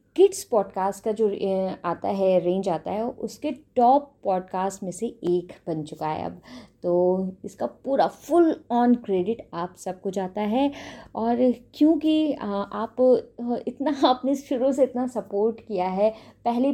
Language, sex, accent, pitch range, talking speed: Hindi, female, native, 195-245 Hz, 145 wpm